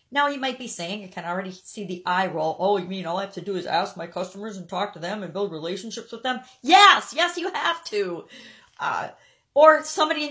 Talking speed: 245 wpm